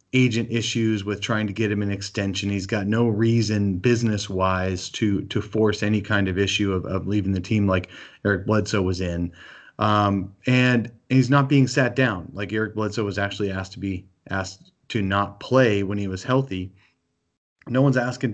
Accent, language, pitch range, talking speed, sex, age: American, English, 95-120 Hz, 185 wpm, male, 30-49